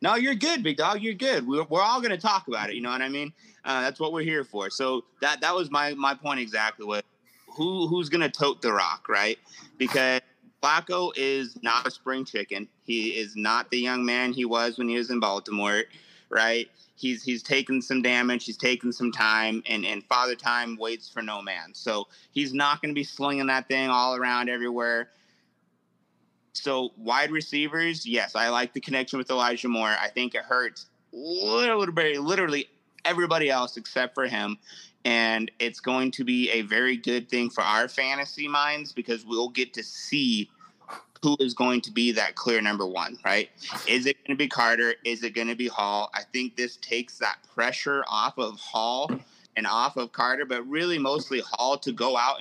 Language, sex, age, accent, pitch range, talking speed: English, male, 30-49, American, 115-145 Hz, 200 wpm